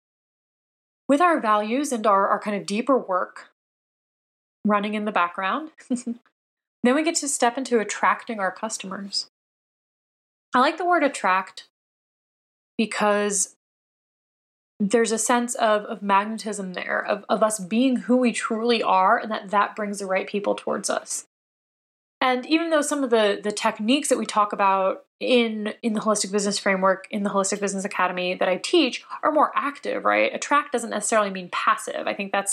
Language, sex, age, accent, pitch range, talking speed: English, female, 20-39, American, 195-235 Hz, 170 wpm